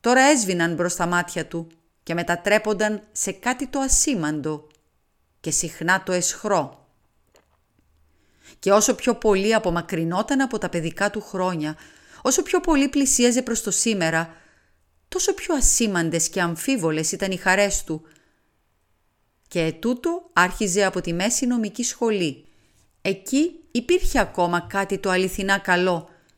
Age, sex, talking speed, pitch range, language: 30-49, female, 130 wpm, 165-230 Hz, Greek